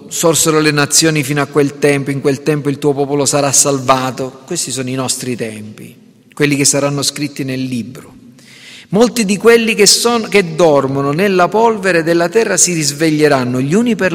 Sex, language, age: male, Italian, 40-59